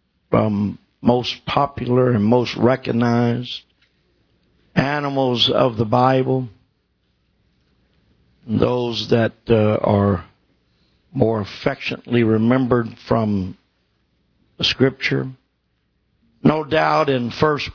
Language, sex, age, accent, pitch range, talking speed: English, male, 50-69, American, 100-130 Hz, 80 wpm